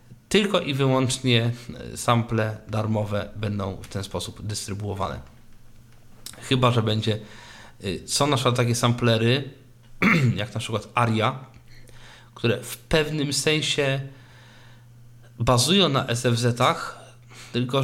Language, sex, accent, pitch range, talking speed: Polish, male, native, 115-130 Hz, 100 wpm